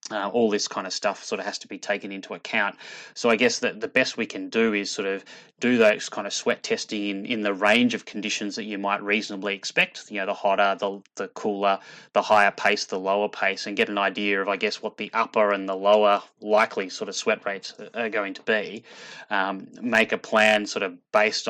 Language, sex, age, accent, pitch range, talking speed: English, male, 20-39, Australian, 100-115 Hz, 235 wpm